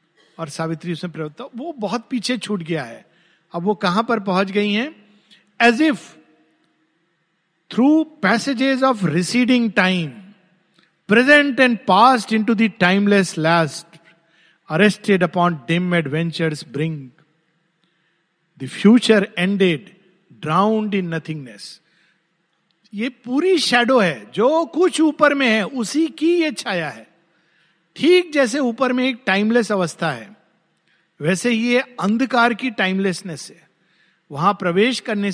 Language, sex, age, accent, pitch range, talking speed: Hindi, male, 50-69, native, 165-230 Hz, 125 wpm